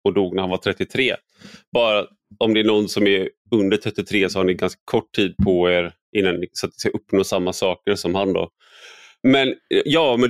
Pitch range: 95-130 Hz